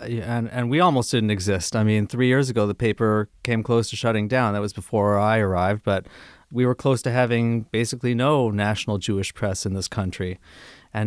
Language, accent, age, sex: English, American, 30-49, male